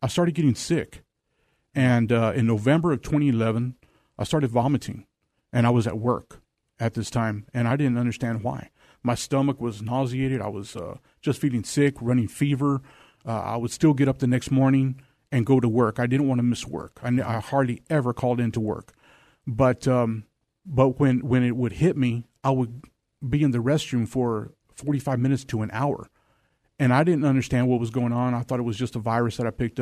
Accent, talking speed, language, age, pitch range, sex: American, 210 wpm, English, 40-59, 115-130 Hz, male